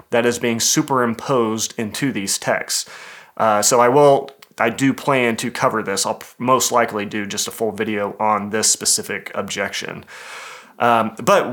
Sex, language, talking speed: male, English, 160 wpm